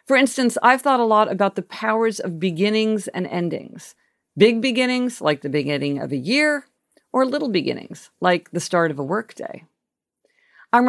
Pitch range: 175-230 Hz